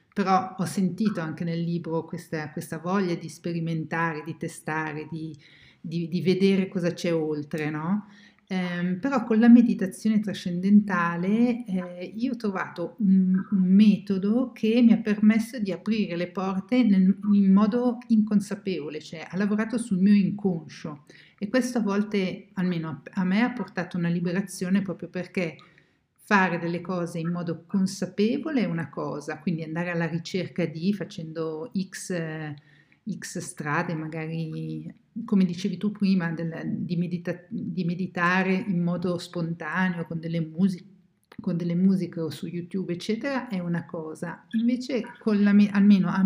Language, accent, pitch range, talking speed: Italian, native, 170-205 Hz, 145 wpm